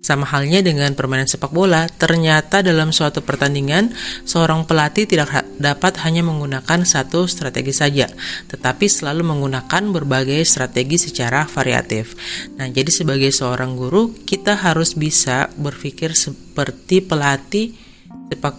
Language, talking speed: Indonesian, 125 wpm